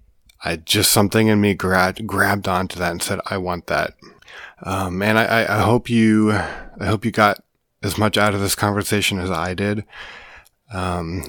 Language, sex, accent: English, male, American